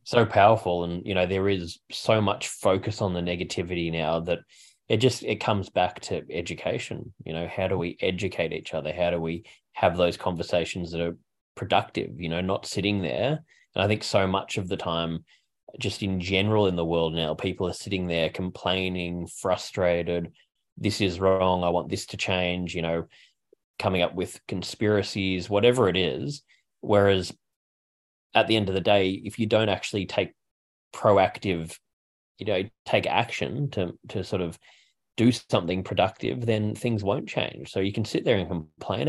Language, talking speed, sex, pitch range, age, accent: English, 180 wpm, male, 85-105 Hz, 20-39, Australian